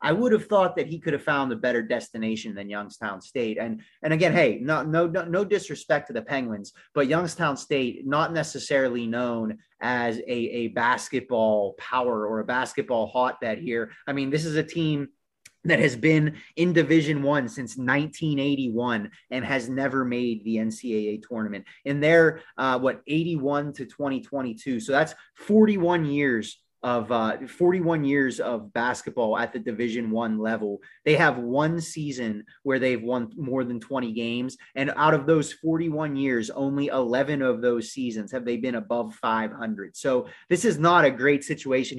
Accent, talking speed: American, 170 wpm